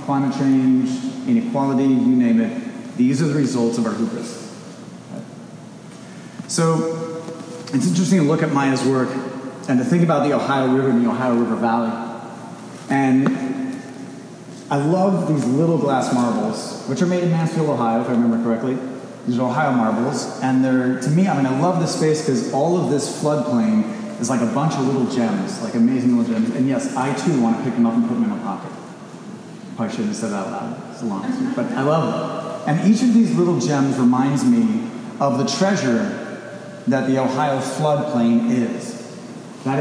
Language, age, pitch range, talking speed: English, 30-49, 130-195 Hz, 195 wpm